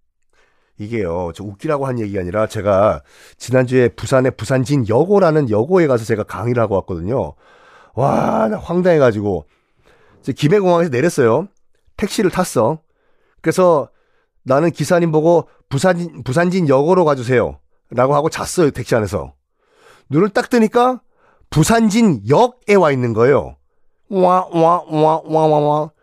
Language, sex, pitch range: Korean, male, 130-205 Hz